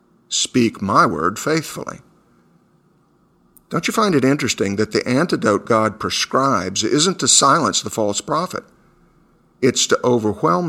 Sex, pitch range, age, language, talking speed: male, 105-145 Hz, 50-69, English, 130 wpm